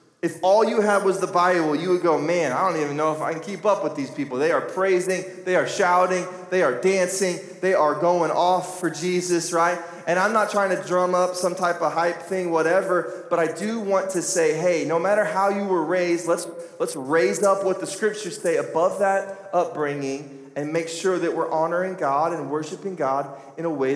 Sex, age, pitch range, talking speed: male, 20-39, 145-180 Hz, 225 wpm